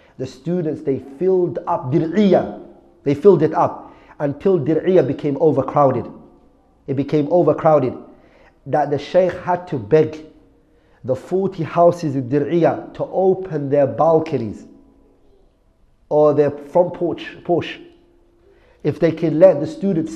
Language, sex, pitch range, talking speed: English, male, 140-175 Hz, 130 wpm